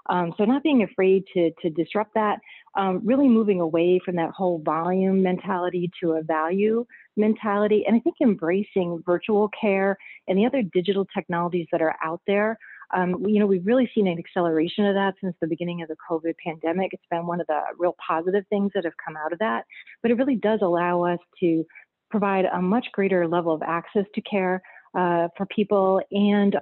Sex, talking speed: female, 200 wpm